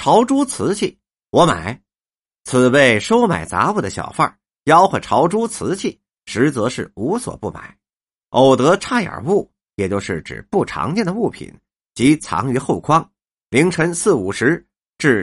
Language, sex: Chinese, male